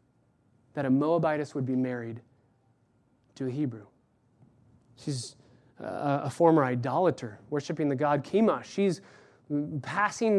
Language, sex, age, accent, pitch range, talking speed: English, male, 20-39, American, 130-200 Hz, 115 wpm